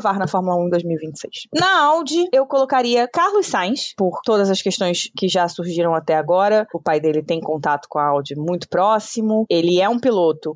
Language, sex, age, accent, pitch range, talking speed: Portuguese, female, 20-39, Brazilian, 160-220 Hz, 195 wpm